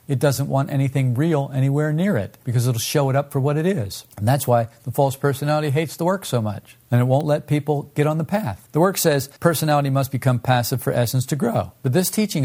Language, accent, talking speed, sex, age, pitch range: English, American, 245 wpm, male, 50-69, 115-160 Hz